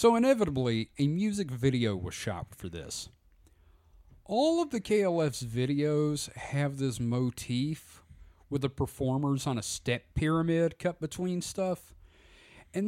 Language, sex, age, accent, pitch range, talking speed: English, male, 40-59, American, 110-180 Hz, 130 wpm